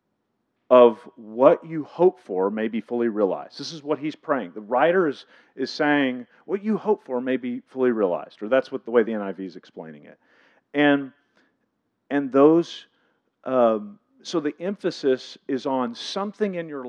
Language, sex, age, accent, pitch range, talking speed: English, male, 50-69, American, 130-180 Hz, 175 wpm